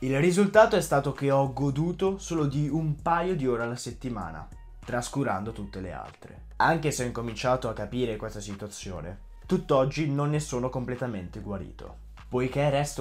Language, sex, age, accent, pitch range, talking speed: Italian, male, 20-39, native, 105-145 Hz, 160 wpm